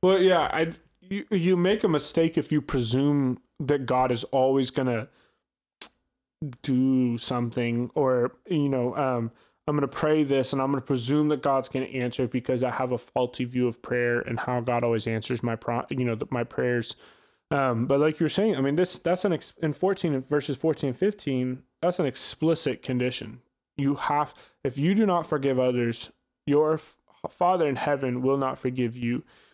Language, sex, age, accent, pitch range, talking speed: English, male, 20-39, American, 125-150 Hz, 195 wpm